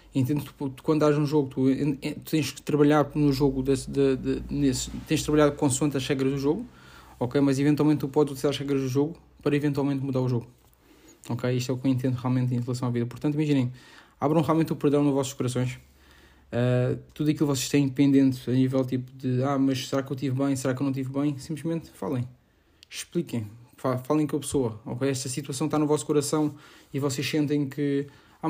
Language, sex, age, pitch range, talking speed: Portuguese, male, 20-39, 130-150 Hz, 215 wpm